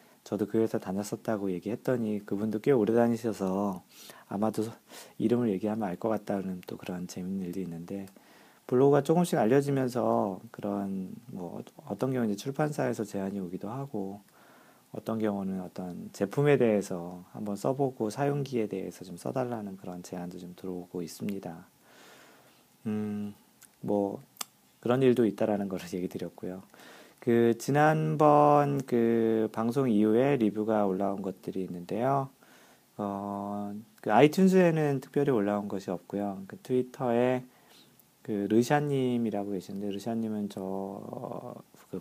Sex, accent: male, native